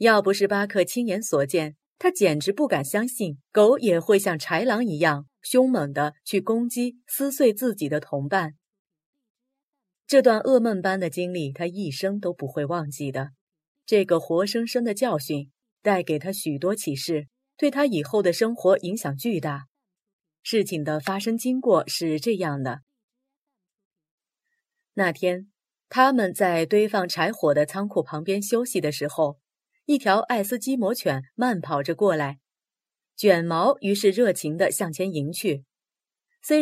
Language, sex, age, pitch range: Chinese, female, 30-49, 160-240 Hz